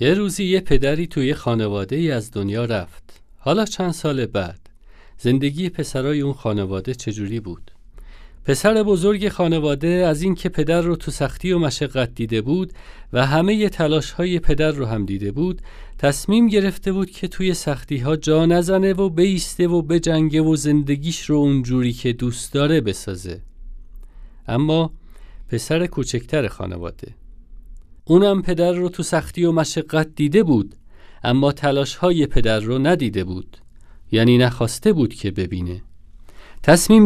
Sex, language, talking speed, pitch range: male, Persian, 145 wpm, 110-170 Hz